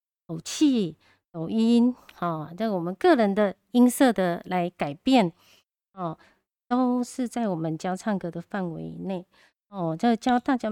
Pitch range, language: 175-225 Hz, Chinese